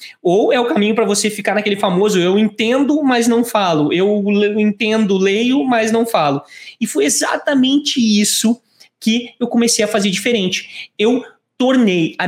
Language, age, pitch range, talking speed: English, 20-39, 185-235 Hz, 160 wpm